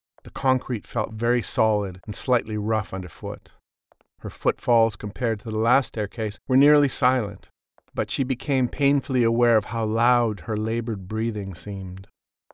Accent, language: American, English